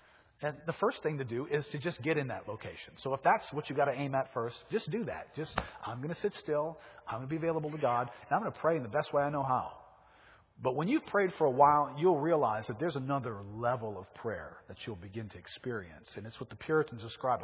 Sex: male